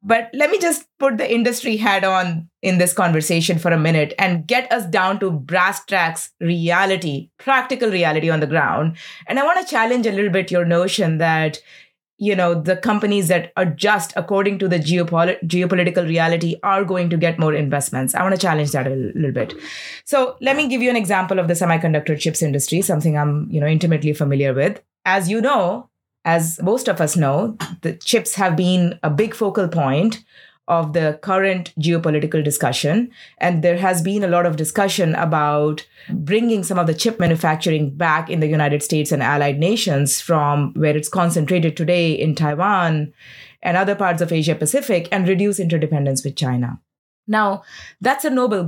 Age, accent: 20-39, Indian